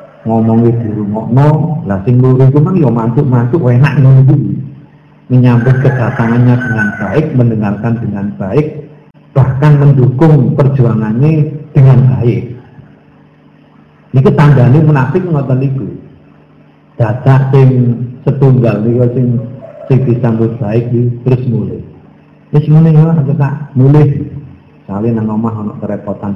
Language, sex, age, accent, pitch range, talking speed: Indonesian, male, 50-69, native, 115-150 Hz, 115 wpm